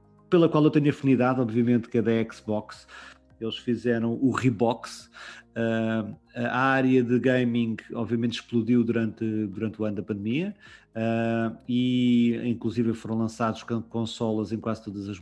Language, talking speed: Portuguese, 145 wpm